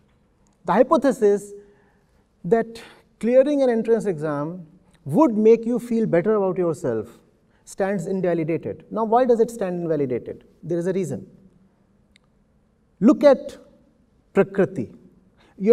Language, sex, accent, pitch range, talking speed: English, male, Indian, 180-250 Hz, 115 wpm